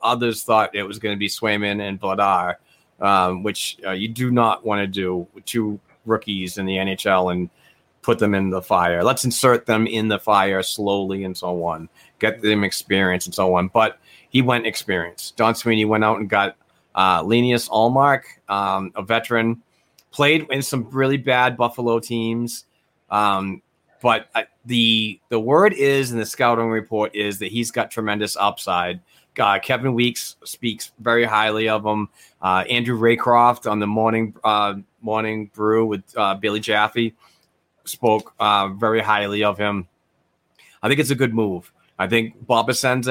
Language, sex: English, male